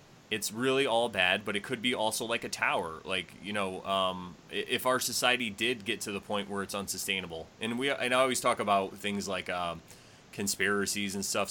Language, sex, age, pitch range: English, male, 20-39, 95-110 Hz